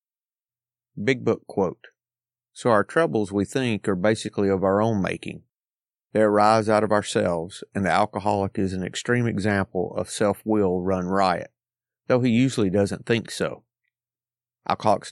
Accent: American